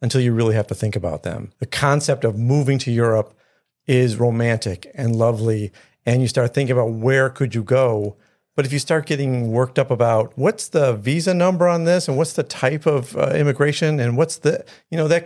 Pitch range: 115-145 Hz